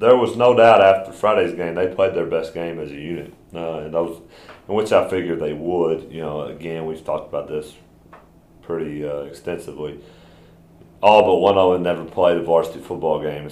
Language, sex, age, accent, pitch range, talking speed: English, male, 30-49, American, 75-90 Hz, 200 wpm